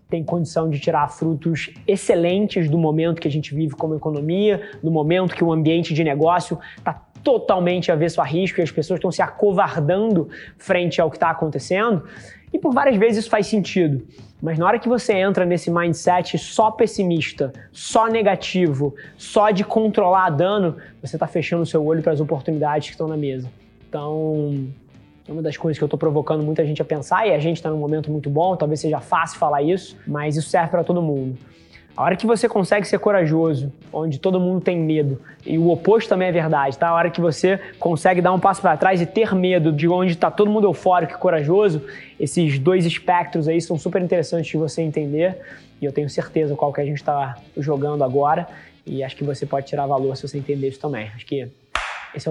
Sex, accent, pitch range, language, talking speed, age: male, Brazilian, 150-185 Hz, Portuguese, 205 wpm, 20-39